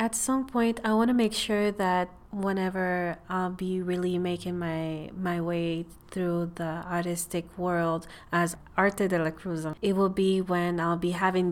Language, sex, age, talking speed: English, female, 30-49, 170 wpm